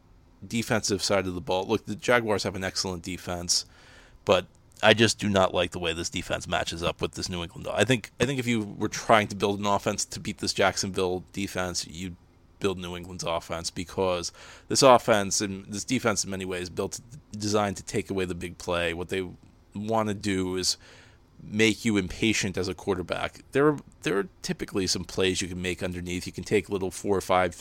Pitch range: 90-105 Hz